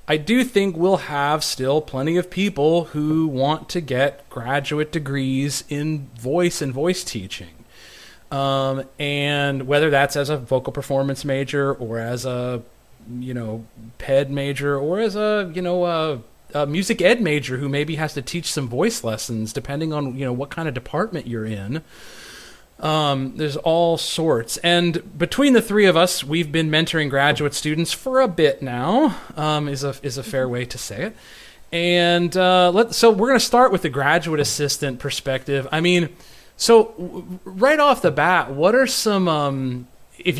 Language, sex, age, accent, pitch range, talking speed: English, male, 30-49, American, 135-175 Hz, 175 wpm